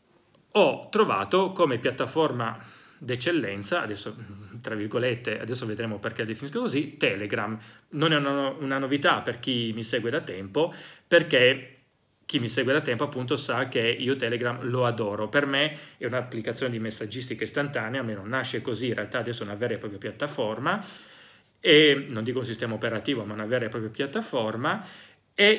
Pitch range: 115-145 Hz